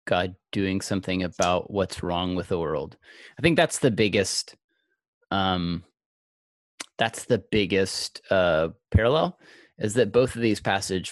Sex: male